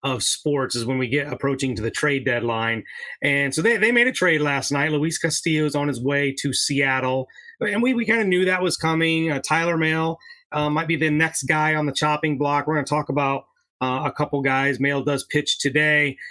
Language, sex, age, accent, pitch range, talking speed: English, male, 30-49, American, 140-185 Hz, 230 wpm